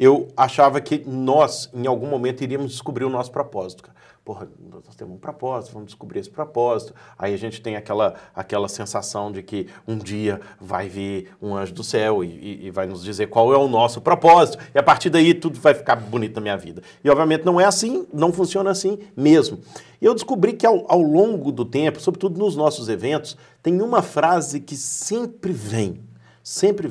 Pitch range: 120-195 Hz